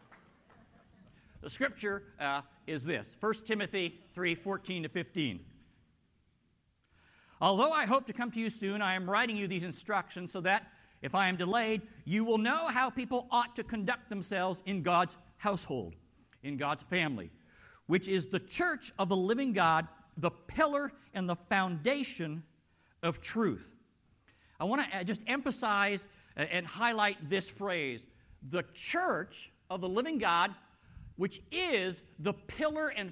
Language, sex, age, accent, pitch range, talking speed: English, male, 50-69, American, 185-250 Hz, 145 wpm